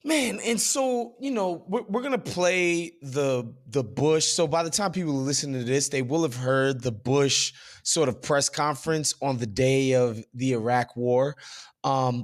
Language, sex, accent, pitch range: English, male, American, 140-185 Hz